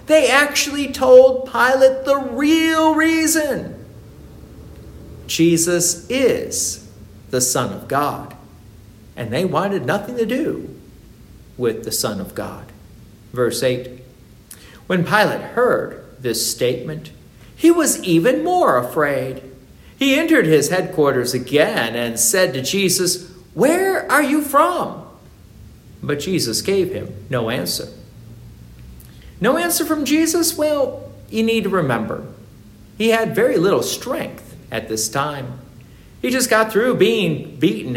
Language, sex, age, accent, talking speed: English, male, 50-69, American, 125 wpm